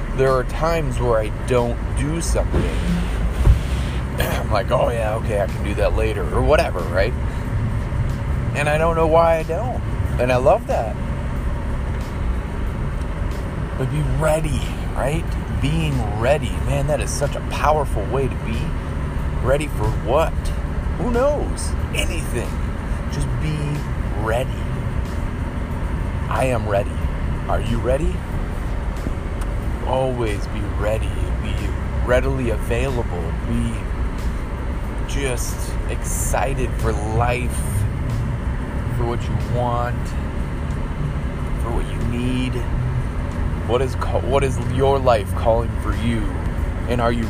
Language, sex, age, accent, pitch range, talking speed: English, male, 40-59, American, 80-115 Hz, 120 wpm